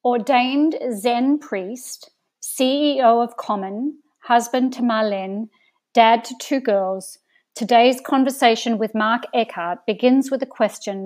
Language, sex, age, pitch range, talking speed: English, female, 50-69, 210-255 Hz, 120 wpm